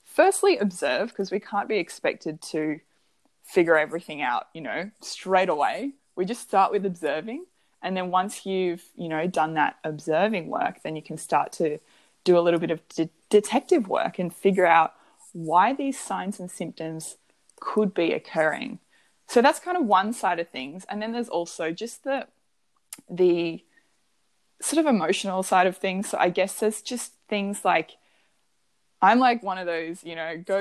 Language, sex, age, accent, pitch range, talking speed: English, female, 20-39, Australian, 165-205 Hz, 175 wpm